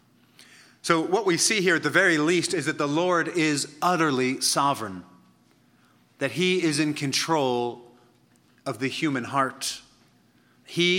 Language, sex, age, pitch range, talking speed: English, male, 40-59, 130-160 Hz, 140 wpm